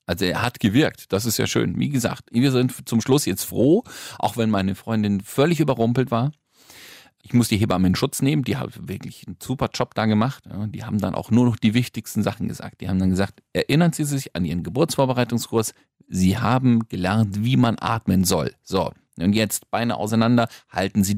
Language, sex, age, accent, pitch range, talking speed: German, male, 40-59, German, 105-140 Hz, 205 wpm